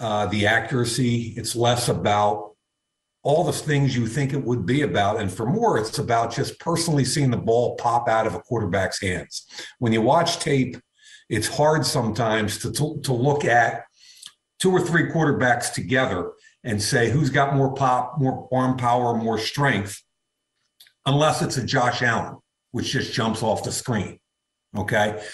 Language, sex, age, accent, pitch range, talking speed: English, male, 50-69, American, 115-145 Hz, 170 wpm